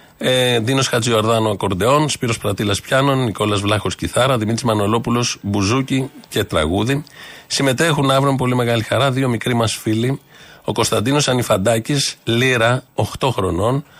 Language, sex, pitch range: Greek, male, 105-135 Hz